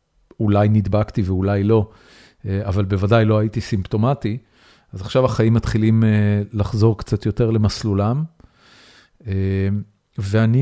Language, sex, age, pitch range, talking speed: Hebrew, male, 40-59, 100-120 Hz, 100 wpm